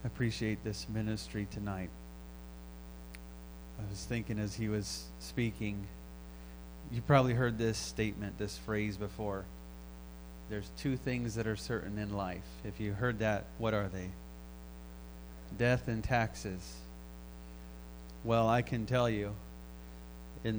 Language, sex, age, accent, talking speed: English, male, 30-49, American, 130 wpm